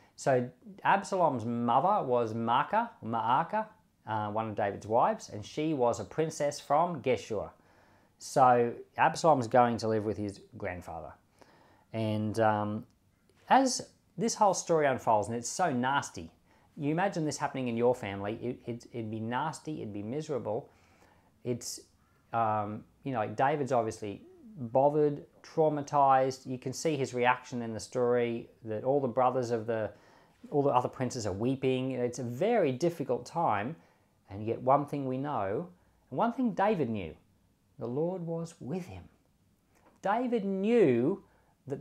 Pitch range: 110-155 Hz